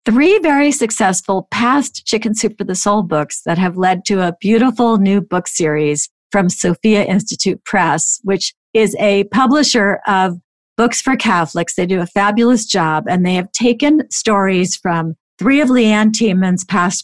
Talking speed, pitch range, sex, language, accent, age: 165 wpm, 175-230 Hz, female, English, American, 50-69